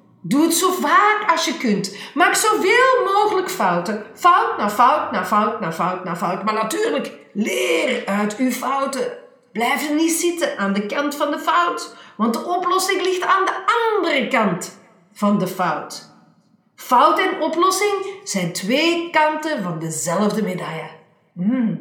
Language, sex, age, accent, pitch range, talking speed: Dutch, female, 50-69, Dutch, 185-275 Hz, 155 wpm